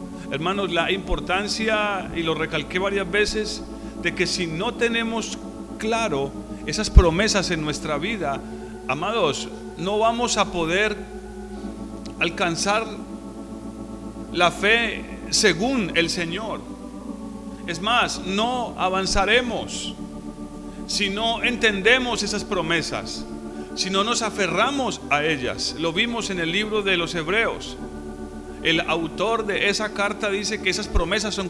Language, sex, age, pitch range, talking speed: Spanish, male, 40-59, 155-230 Hz, 120 wpm